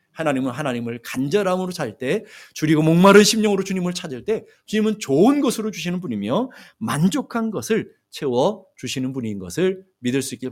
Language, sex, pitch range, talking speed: English, male, 130-190 Hz, 135 wpm